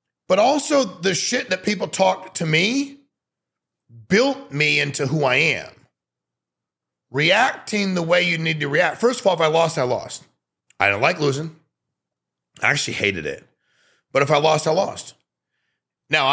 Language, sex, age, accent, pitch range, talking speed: English, male, 40-59, American, 130-200 Hz, 165 wpm